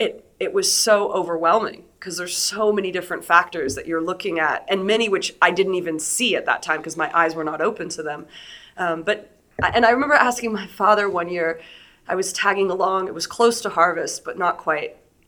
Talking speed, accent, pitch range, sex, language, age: 215 wpm, American, 165-215 Hz, female, English, 30-49